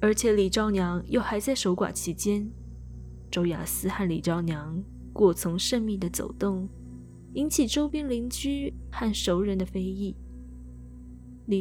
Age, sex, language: 20-39, female, Chinese